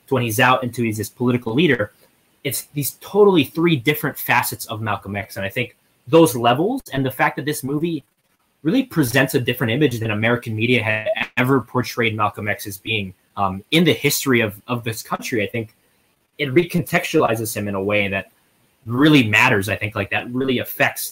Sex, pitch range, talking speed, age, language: male, 105-130 Hz, 195 wpm, 20-39, English